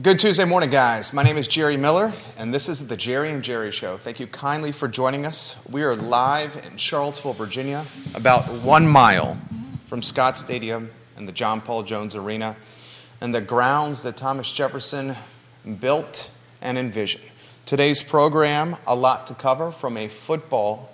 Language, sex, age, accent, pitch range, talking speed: English, male, 30-49, American, 120-145 Hz, 170 wpm